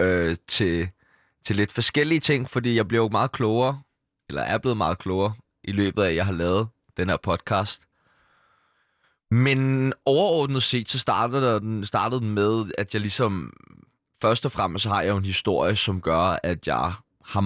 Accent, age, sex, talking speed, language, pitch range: native, 20-39, male, 160 wpm, Danish, 100-125 Hz